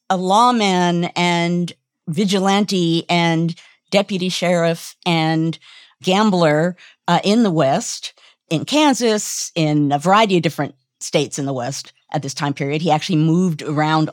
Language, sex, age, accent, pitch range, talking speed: English, female, 50-69, American, 150-195 Hz, 135 wpm